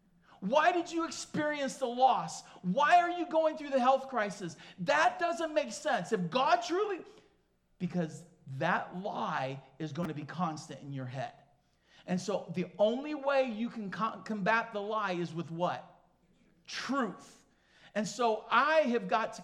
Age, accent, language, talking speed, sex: 50-69, American, English, 160 wpm, male